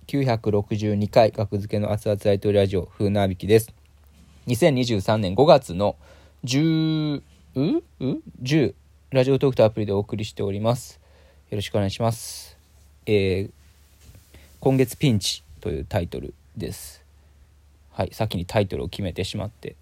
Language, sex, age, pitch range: Japanese, male, 20-39, 75-110 Hz